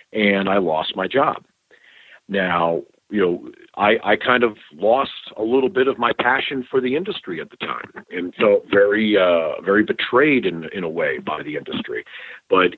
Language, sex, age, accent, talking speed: English, male, 50-69, American, 185 wpm